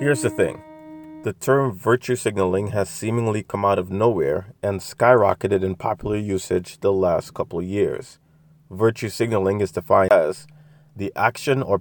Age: 30-49